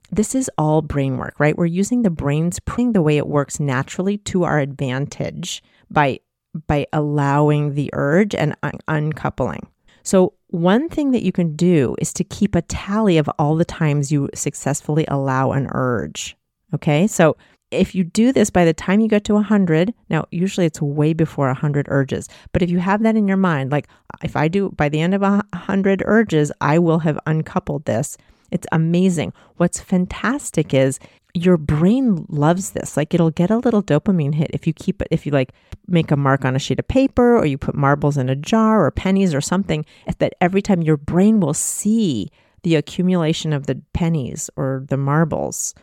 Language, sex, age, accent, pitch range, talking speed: English, female, 40-59, American, 145-185 Hz, 190 wpm